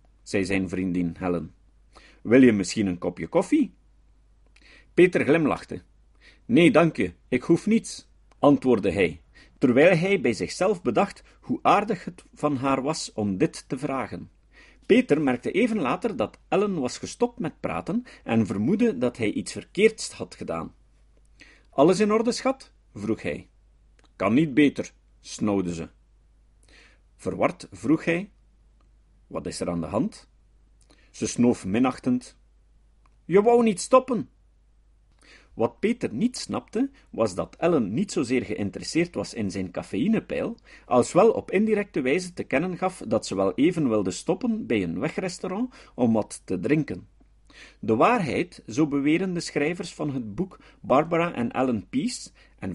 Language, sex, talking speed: Dutch, male, 145 wpm